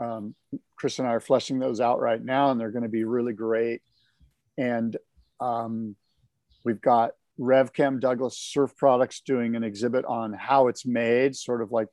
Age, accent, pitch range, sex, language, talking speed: 50-69, American, 115-140 Hz, male, English, 175 wpm